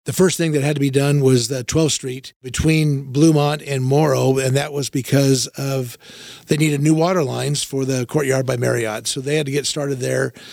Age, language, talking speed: 50-69, English, 215 wpm